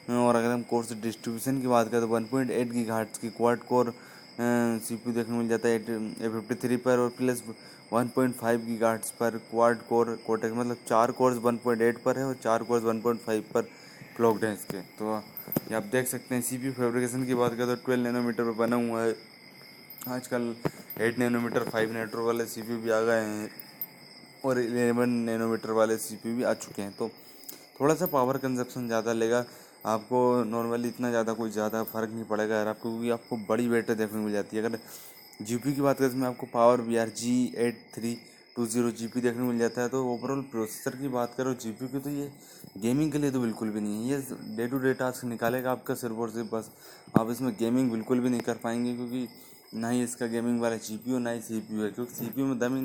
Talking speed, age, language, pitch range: 205 wpm, 20-39, Hindi, 115-125 Hz